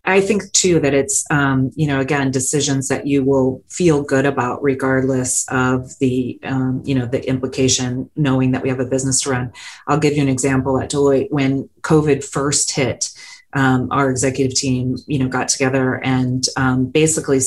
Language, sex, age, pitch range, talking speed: English, female, 30-49, 130-165 Hz, 185 wpm